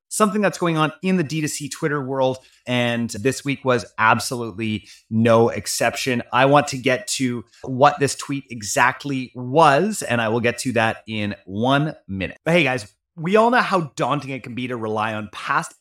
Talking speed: 190 wpm